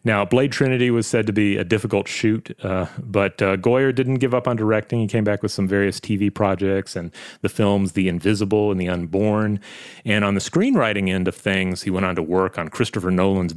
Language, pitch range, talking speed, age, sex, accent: English, 95-110 Hz, 220 wpm, 30-49, male, American